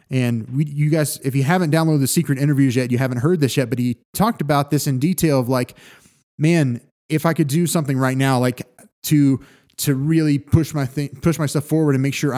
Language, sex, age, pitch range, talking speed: English, male, 20-39, 130-165 Hz, 230 wpm